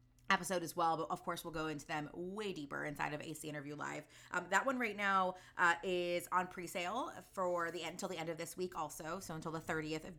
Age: 20-39